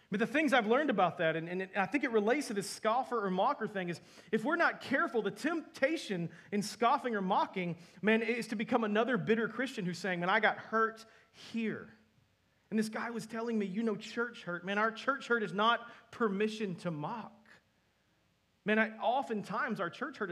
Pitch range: 170-225 Hz